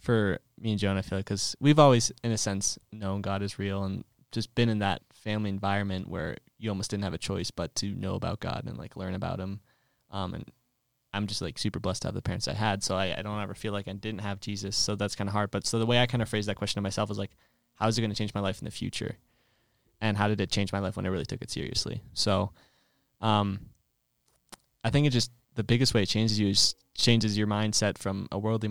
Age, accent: 20-39, American